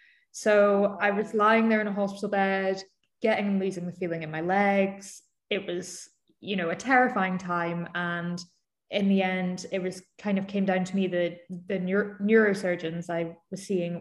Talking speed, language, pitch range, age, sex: 180 wpm, English, 175-200 Hz, 20-39, female